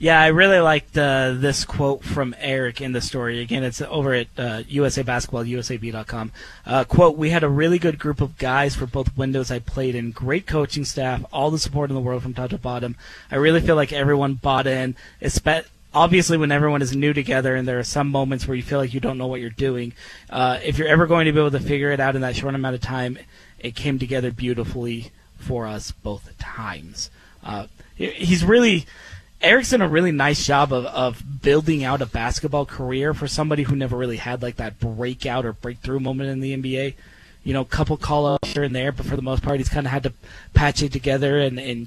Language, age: English, 20-39